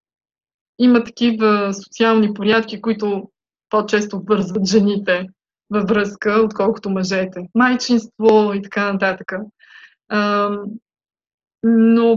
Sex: female